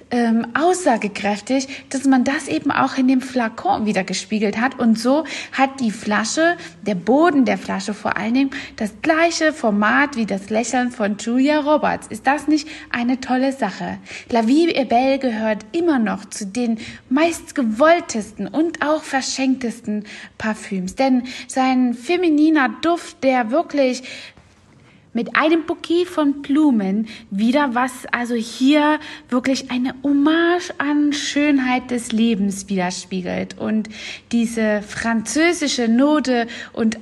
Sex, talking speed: female, 130 wpm